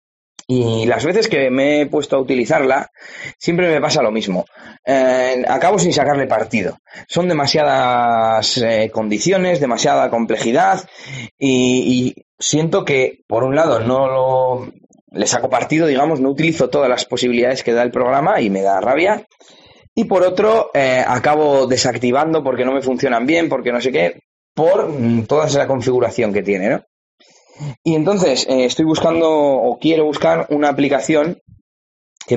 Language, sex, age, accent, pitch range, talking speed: Spanish, male, 20-39, Spanish, 125-160 Hz, 155 wpm